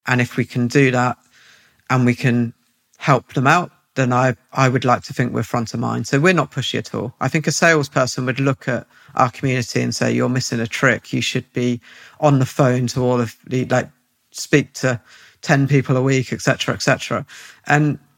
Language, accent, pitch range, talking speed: English, British, 125-145 Hz, 220 wpm